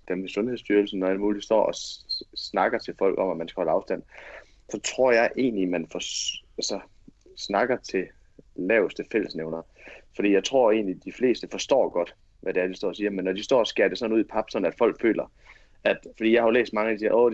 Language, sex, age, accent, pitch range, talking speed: Danish, male, 30-49, native, 95-110 Hz, 245 wpm